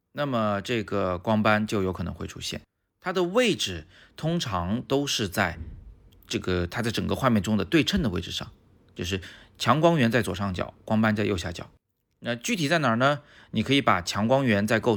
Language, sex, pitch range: Chinese, male, 95-115 Hz